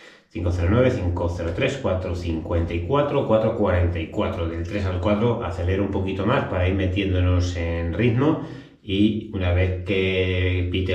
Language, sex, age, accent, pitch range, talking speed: Spanish, male, 30-49, Spanish, 90-110 Hz, 120 wpm